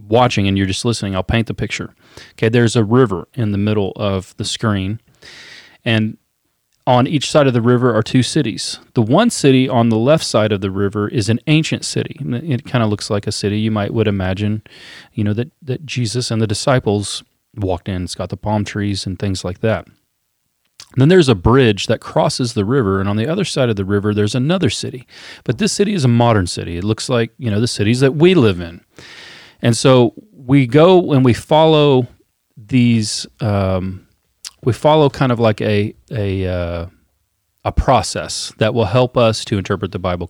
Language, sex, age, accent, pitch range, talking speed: English, male, 30-49, American, 105-130 Hz, 205 wpm